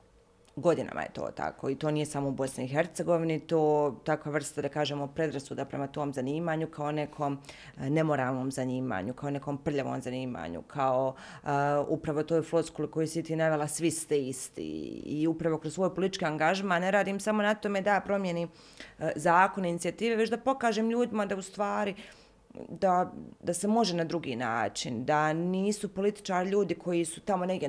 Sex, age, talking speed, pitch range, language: female, 30-49, 165 wpm, 155-200 Hz, Croatian